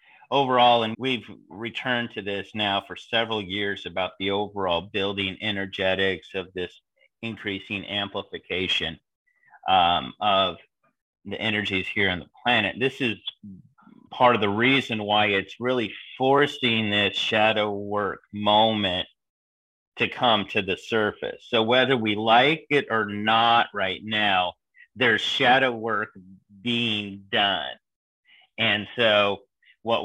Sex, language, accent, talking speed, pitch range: male, English, American, 125 wpm, 100-125 Hz